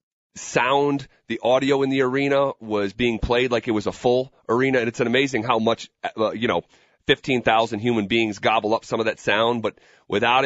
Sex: male